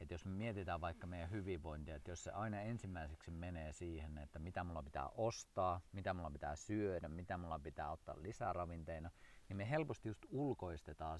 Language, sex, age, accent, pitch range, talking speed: Finnish, male, 40-59, native, 80-105 Hz, 180 wpm